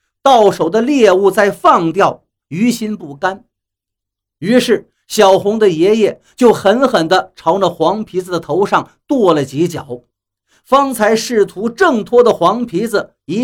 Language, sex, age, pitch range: Chinese, male, 50-69, 150-235 Hz